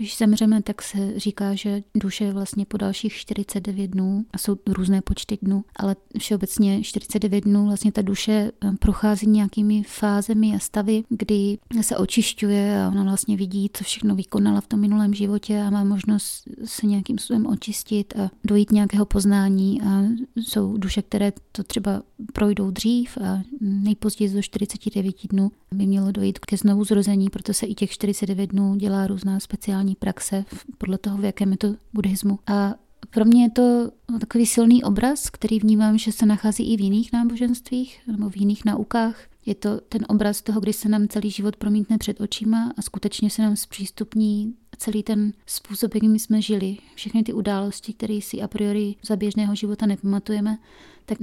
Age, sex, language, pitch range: 30-49, female, Czech, 200-215 Hz